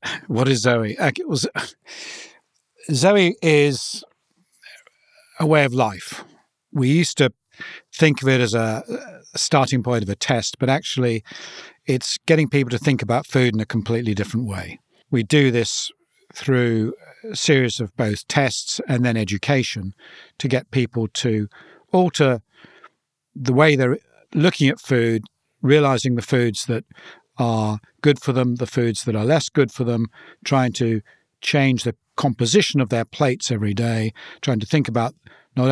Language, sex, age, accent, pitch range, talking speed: English, male, 50-69, British, 115-140 Hz, 150 wpm